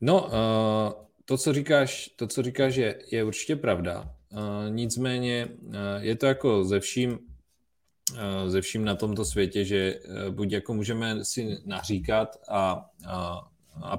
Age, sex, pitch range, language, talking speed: 20-39, male, 95-110 Hz, Czech, 135 wpm